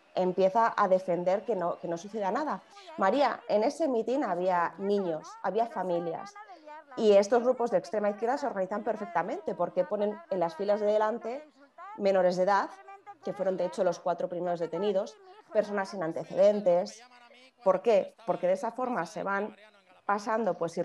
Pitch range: 185-225 Hz